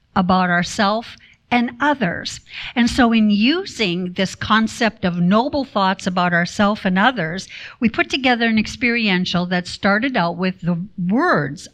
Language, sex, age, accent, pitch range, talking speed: English, female, 60-79, American, 180-230 Hz, 145 wpm